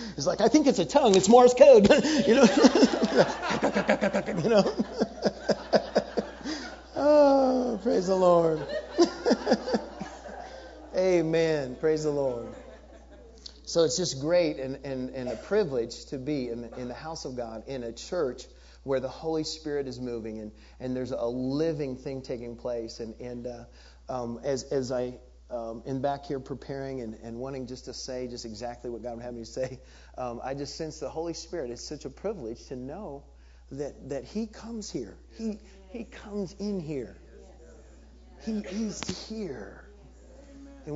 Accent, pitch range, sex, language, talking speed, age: American, 105-175 Hz, male, English, 160 wpm, 30-49